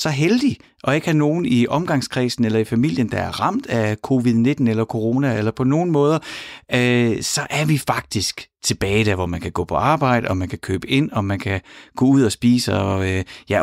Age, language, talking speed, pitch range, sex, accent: 30-49, Danish, 220 wpm, 105-155 Hz, male, native